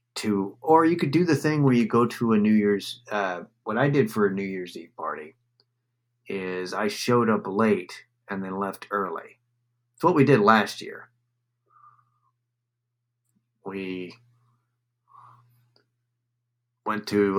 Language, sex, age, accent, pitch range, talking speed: English, male, 30-49, American, 100-120 Hz, 140 wpm